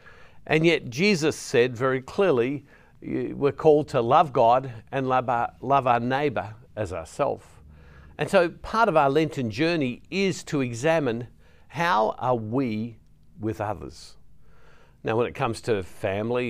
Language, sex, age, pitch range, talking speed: English, male, 50-69, 105-145 Hz, 145 wpm